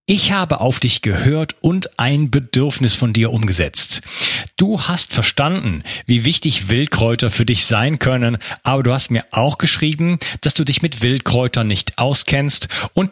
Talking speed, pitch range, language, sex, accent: 160 wpm, 105-140 Hz, German, male, German